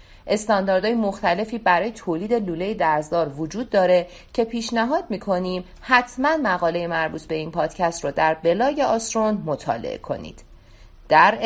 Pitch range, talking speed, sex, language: 170-235 Hz, 125 wpm, female, Persian